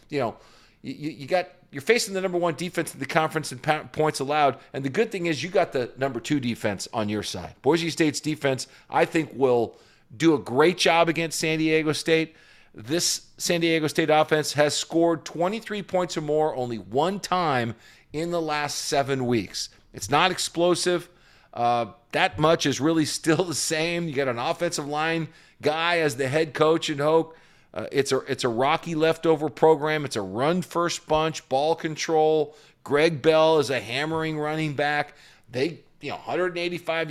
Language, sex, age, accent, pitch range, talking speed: English, male, 40-59, American, 135-165 Hz, 185 wpm